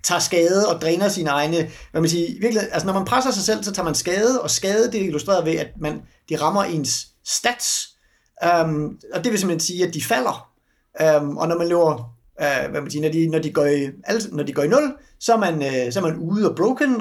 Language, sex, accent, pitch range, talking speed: Danish, male, native, 160-215 Hz, 250 wpm